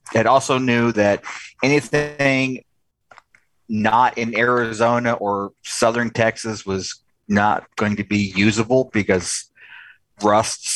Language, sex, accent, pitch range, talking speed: English, male, American, 100-120 Hz, 105 wpm